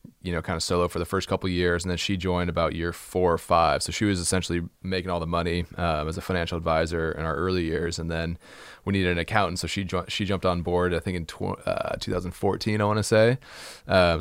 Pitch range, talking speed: 85-100 Hz, 260 wpm